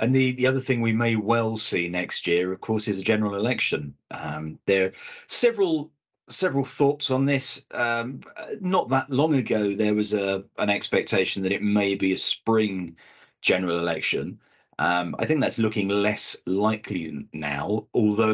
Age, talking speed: 30-49, 165 wpm